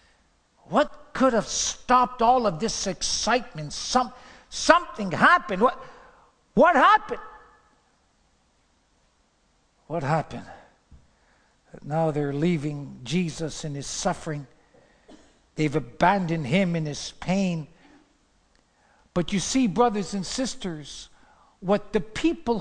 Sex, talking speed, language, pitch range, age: male, 100 wpm, English, 180-275 Hz, 60-79